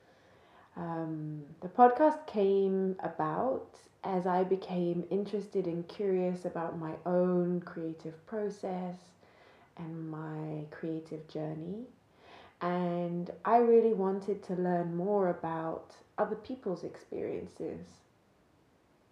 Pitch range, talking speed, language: 160-205 Hz, 95 wpm, English